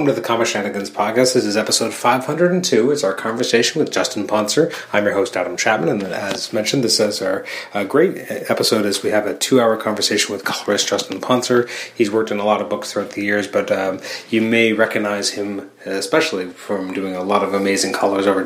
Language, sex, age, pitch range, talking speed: English, male, 30-49, 95-110 Hz, 210 wpm